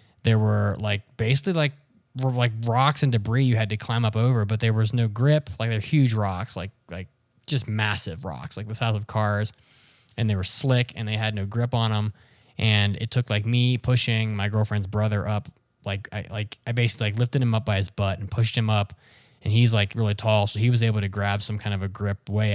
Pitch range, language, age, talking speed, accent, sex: 105-125 Hz, English, 20-39, 235 wpm, American, male